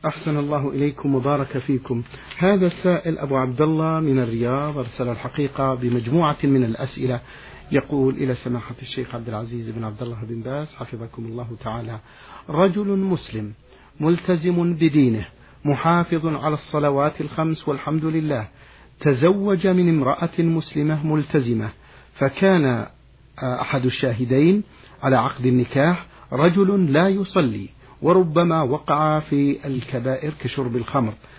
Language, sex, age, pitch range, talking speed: Arabic, male, 50-69, 125-155 Hz, 115 wpm